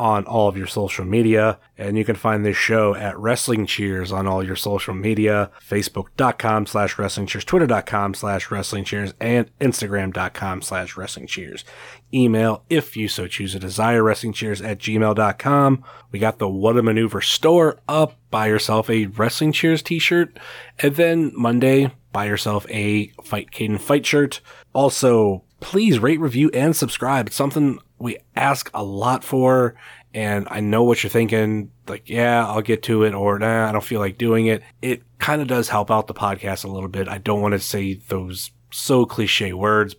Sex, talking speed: male, 180 wpm